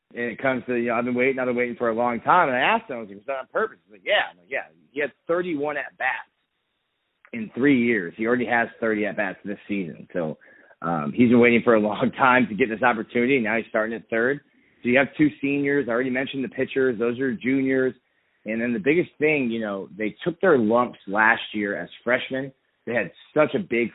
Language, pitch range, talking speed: English, 110-130 Hz, 240 wpm